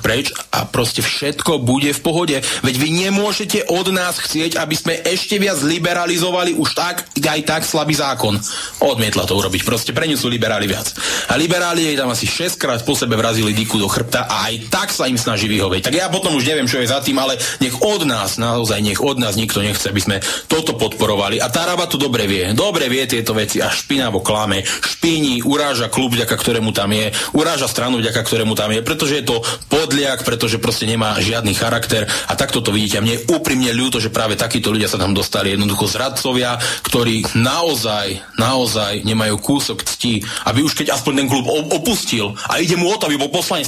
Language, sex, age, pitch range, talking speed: Slovak, male, 30-49, 110-155 Hz, 205 wpm